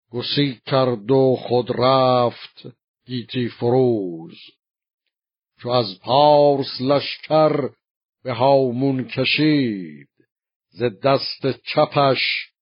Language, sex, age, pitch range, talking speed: Persian, male, 60-79, 115-135 Hz, 85 wpm